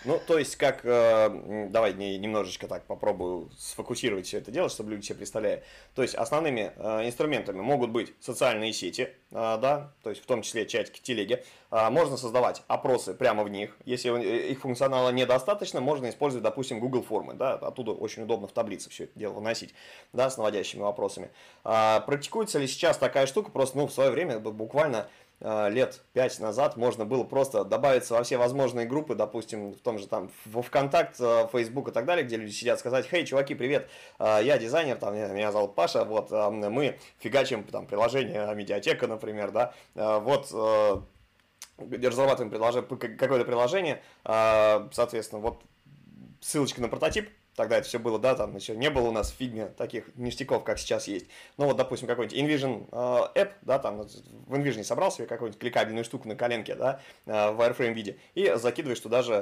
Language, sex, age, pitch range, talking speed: Russian, male, 20-39, 110-135 Hz, 170 wpm